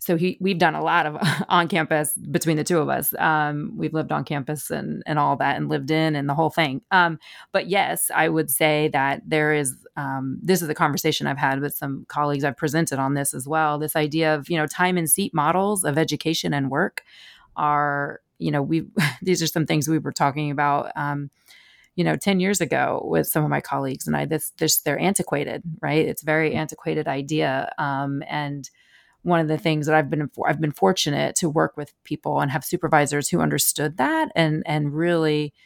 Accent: American